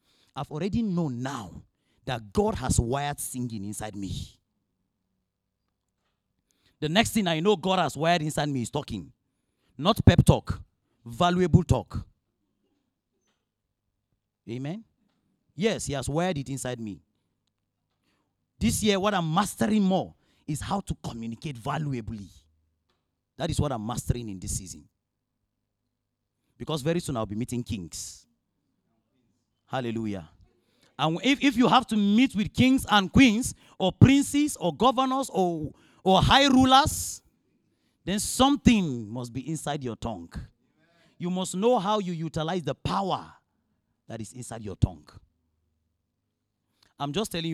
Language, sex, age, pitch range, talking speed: English, male, 40-59, 95-160 Hz, 135 wpm